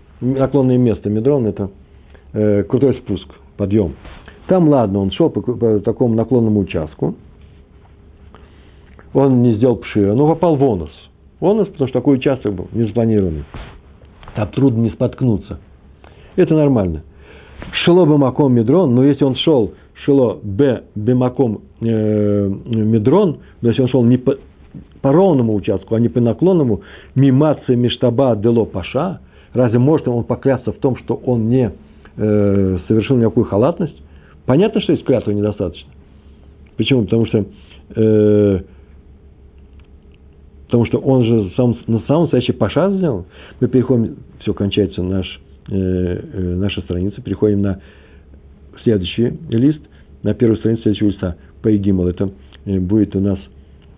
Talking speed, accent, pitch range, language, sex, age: 140 wpm, native, 80-125 Hz, Russian, male, 60-79